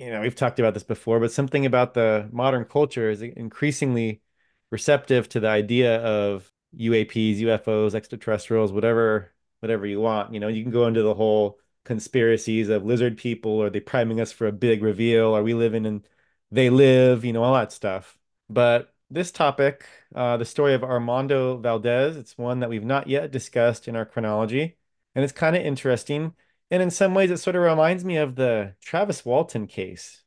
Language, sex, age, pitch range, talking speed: English, male, 30-49, 110-135 Hz, 190 wpm